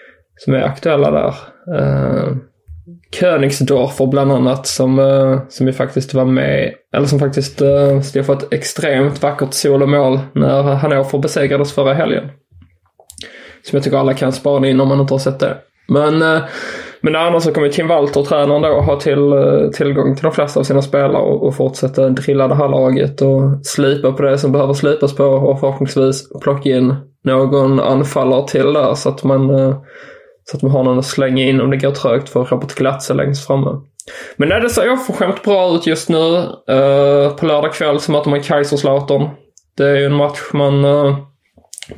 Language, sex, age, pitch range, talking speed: English, male, 20-39, 135-145 Hz, 195 wpm